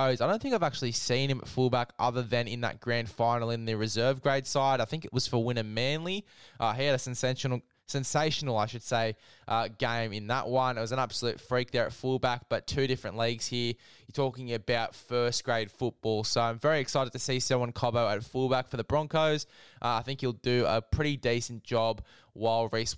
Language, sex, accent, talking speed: English, male, Australian, 220 wpm